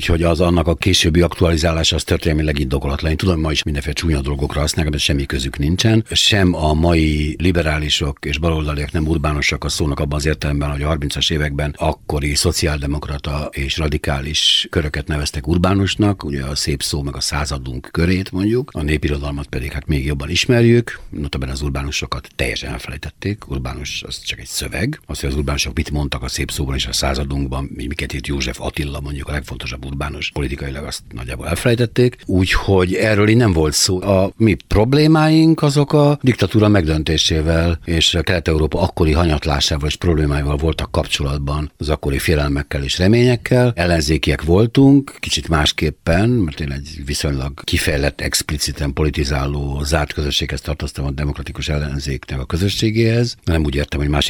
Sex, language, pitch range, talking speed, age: male, Hungarian, 70-90 Hz, 160 wpm, 60-79